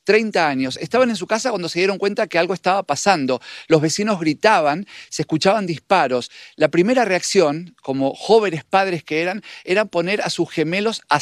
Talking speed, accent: 180 wpm, Argentinian